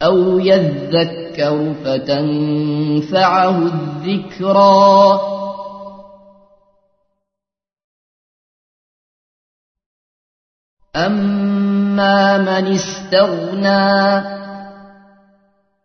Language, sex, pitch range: Arabic, male, 185-200 Hz